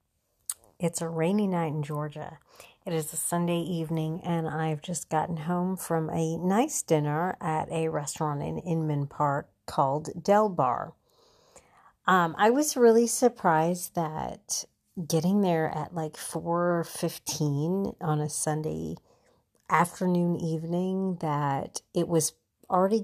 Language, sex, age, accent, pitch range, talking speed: English, female, 50-69, American, 155-185 Hz, 130 wpm